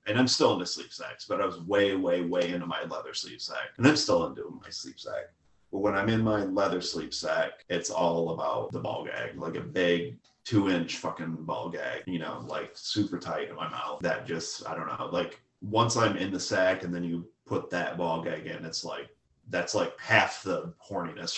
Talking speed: 225 wpm